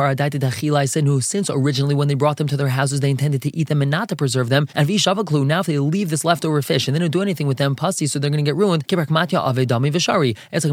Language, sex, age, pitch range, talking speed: English, male, 20-39, 140-175 Hz, 255 wpm